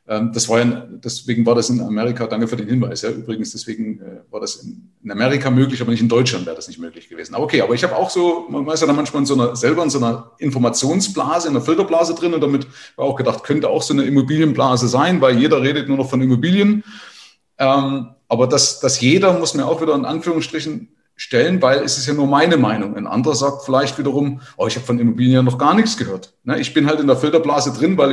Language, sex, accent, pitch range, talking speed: German, male, German, 125-165 Hz, 230 wpm